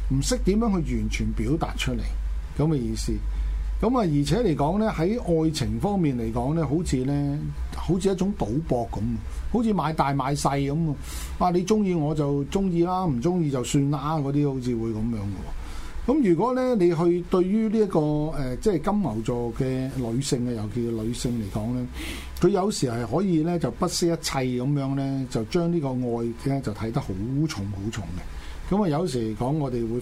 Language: Chinese